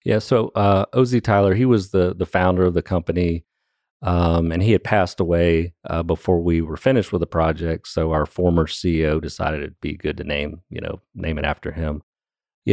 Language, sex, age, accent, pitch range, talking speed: English, male, 40-59, American, 80-95 Hz, 205 wpm